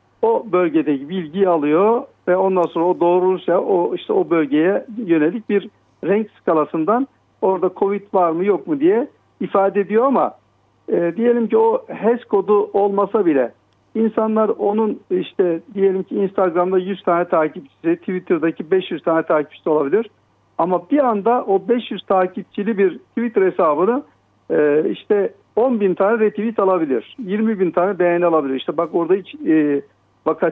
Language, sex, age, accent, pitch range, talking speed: Turkish, male, 60-79, native, 175-225 Hz, 150 wpm